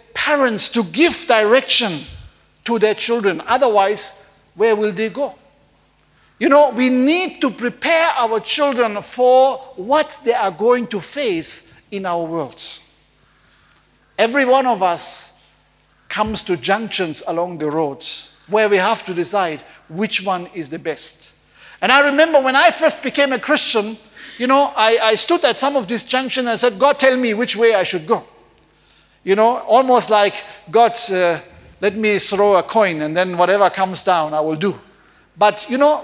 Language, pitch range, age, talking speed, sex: English, 185-250 Hz, 50-69, 170 wpm, male